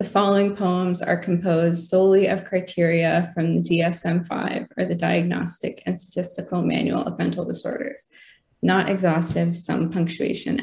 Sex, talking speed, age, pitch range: female, 135 wpm, 20-39, 175-205 Hz